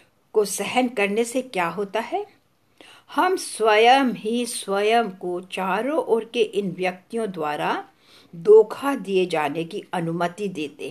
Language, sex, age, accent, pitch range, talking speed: English, female, 60-79, Indian, 185-250 Hz, 130 wpm